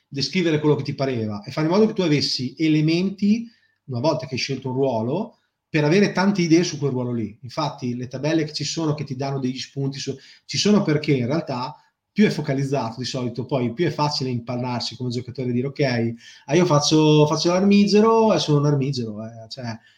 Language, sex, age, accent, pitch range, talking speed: Italian, male, 30-49, native, 125-150 Hz, 215 wpm